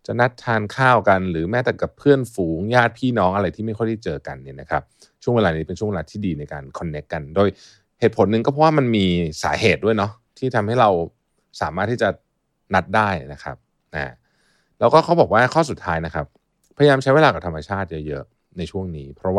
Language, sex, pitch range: Thai, male, 80-115 Hz